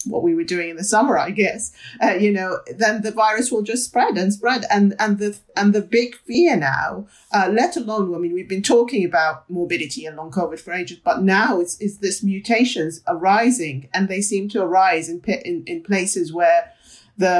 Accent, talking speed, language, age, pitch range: British, 210 wpm, English, 40-59, 180-230 Hz